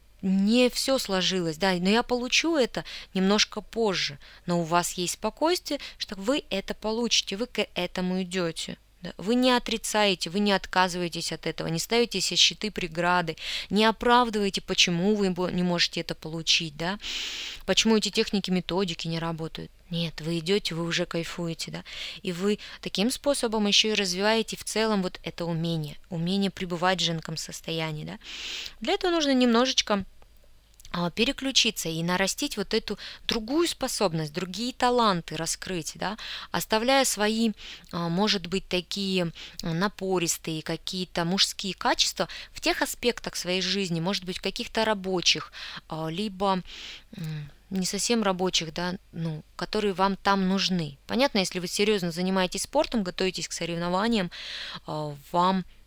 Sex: female